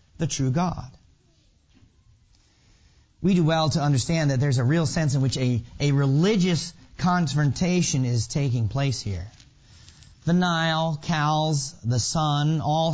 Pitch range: 120-160 Hz